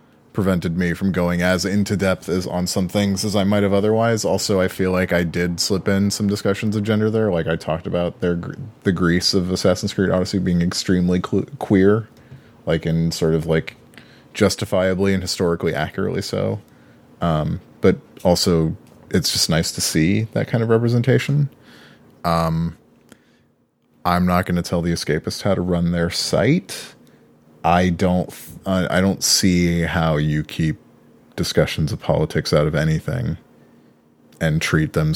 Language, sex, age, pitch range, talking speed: English, male, 30-49, 80-100 Hz, 160 wpm